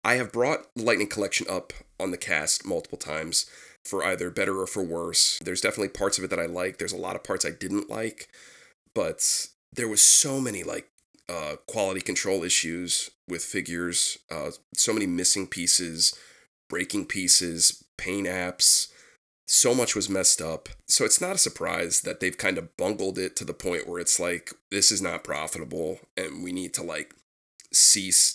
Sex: male